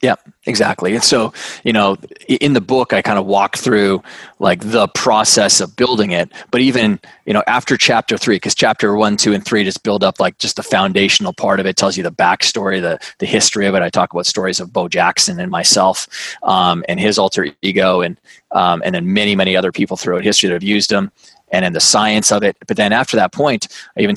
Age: 20-39